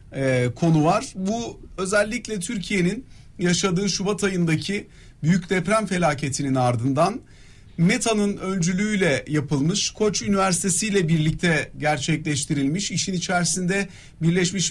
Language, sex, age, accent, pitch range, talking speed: Turkish, male, 50-69, native, 160-205 Hz, 95 wpm